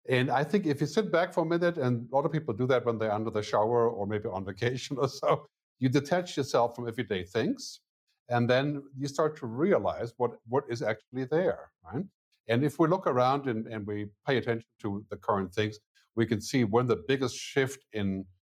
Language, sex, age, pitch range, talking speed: English, male, 50-69, 105-130 Hz, 220 wpm